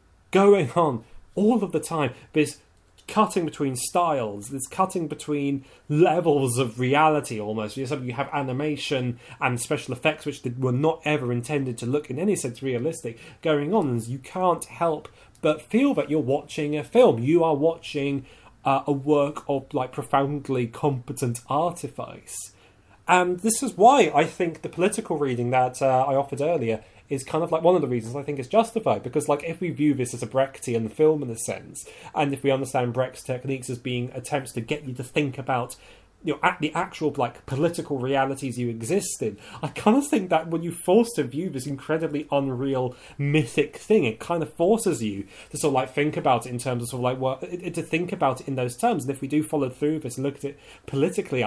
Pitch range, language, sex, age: 125-155 Hz, English, male, 30-49